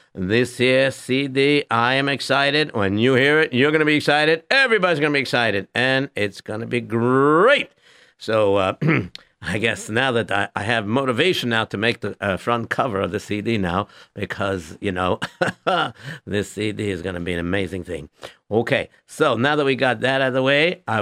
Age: 60-79